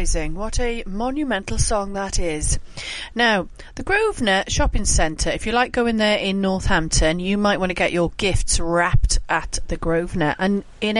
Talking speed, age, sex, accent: 165 wpm, 40-59, female, British